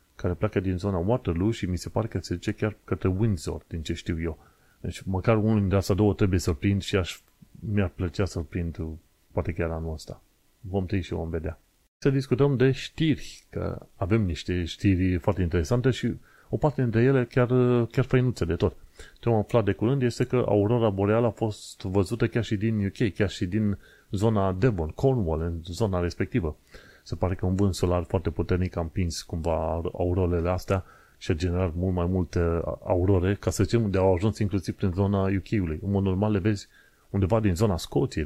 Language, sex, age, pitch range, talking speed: Romanian, male, 30-49, 90-110 Hz, 195 wpm